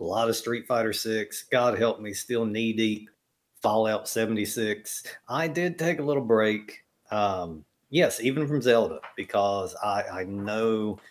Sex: male